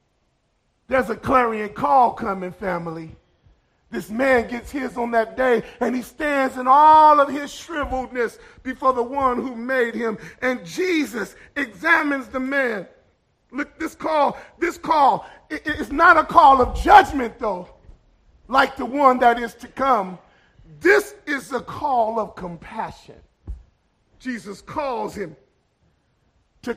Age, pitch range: 40-59, 245-315 Hz